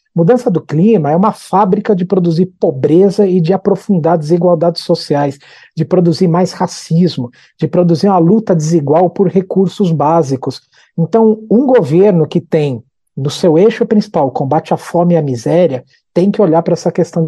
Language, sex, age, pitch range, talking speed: Portuguese, male, 50-69, 155-185 Hz, 165 wpm